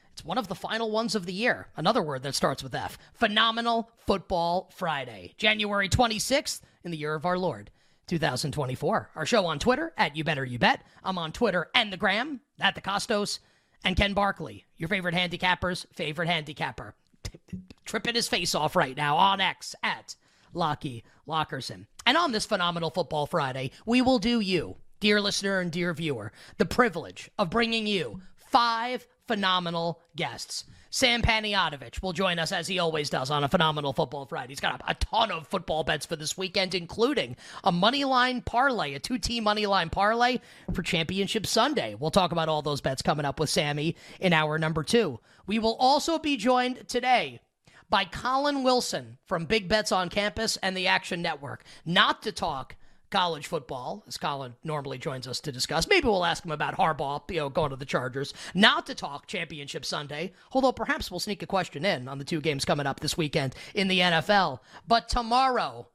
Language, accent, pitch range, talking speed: English, American, 155-220 Hz, 185 wpm